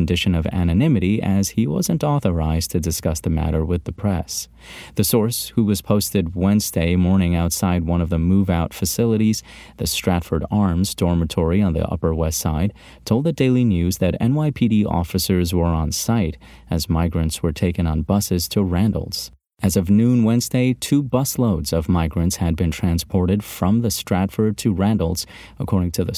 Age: 30-49